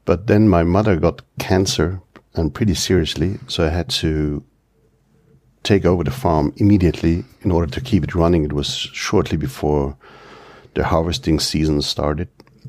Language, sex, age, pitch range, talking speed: German, male, 50-69, 80-115 Hz, 150 wpm